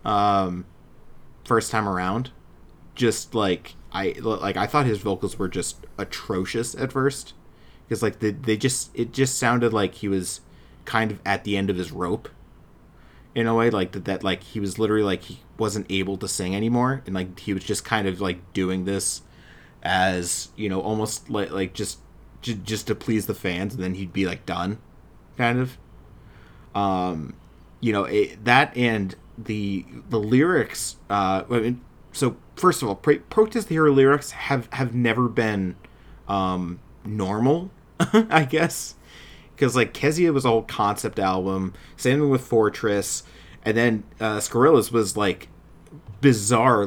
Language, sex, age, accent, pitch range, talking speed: English, male, 20-39, American, 95-125 Hz, 170 wpm